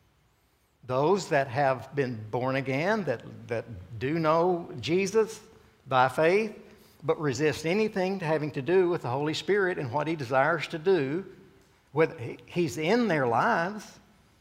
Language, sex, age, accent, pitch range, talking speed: English, male, 60-79, American, 135-195 Hz, 145 wpm